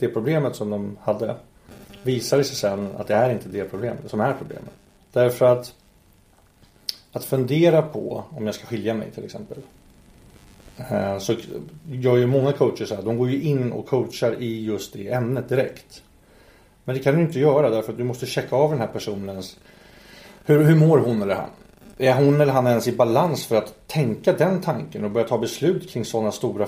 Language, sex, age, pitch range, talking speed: Swedish, male, 30-49, 105-135 Hz, 195 wpm